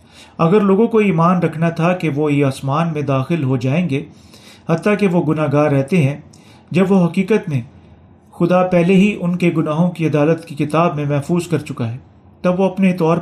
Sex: male